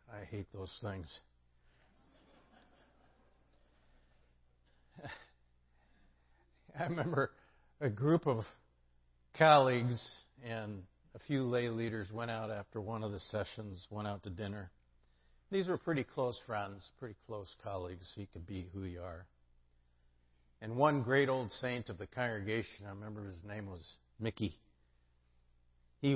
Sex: male